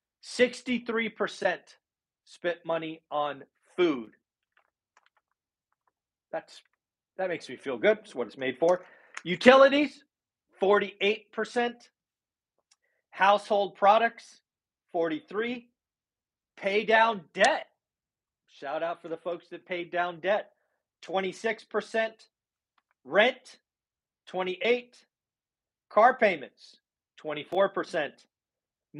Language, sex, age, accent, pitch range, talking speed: English, male, 40-59, American, 155-215 Hz, 80 wpm